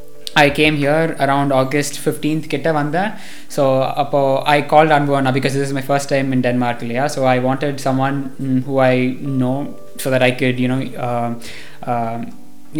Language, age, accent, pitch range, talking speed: Tamil, 20-39, native, 130-150 Hz, 180 wpm